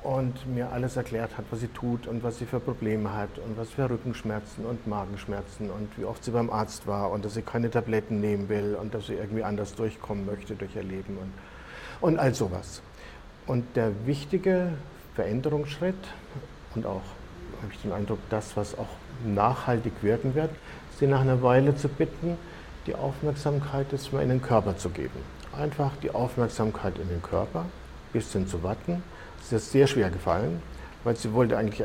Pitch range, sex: 105-135 Hz, male